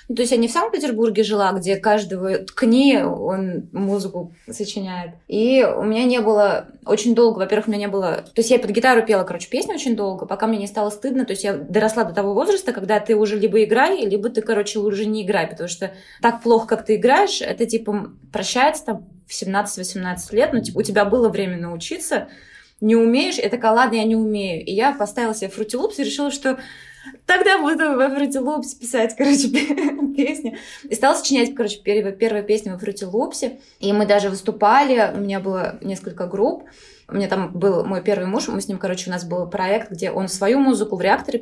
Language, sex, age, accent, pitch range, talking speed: Russian, female, 20-39, native, 195-240 Hz, 205 wpm